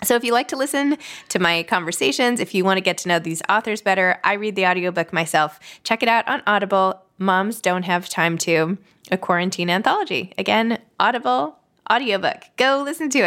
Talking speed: 195 wpm